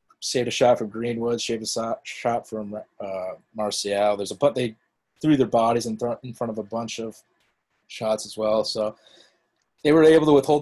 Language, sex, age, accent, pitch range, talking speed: English, male, 20-39, American, 110-130 Hz, 185 wpm